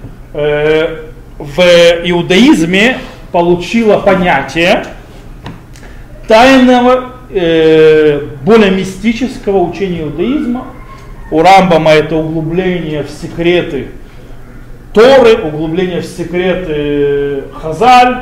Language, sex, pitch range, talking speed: Russian, male, 160-230 Hz, 65 wpm